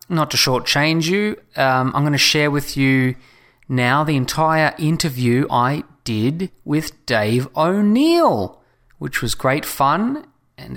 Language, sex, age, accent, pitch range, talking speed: English, male, 30-49, Australian, 110-140 Hz, 140 wpm